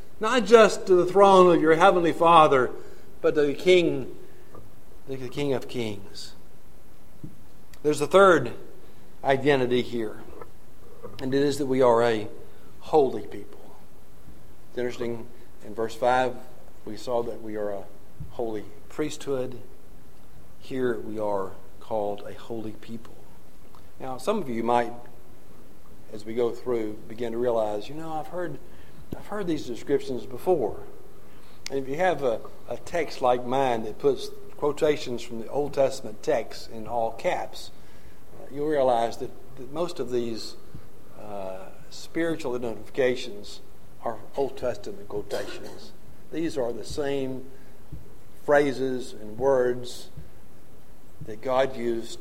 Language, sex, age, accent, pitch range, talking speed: English, male, 50-69, American, 110-145 Hz, 130 wpm